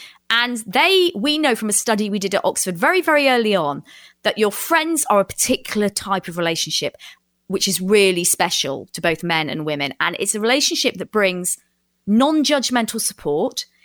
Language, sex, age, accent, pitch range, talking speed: English, female, 30-49, British, 170-240 Hz, 180 wpm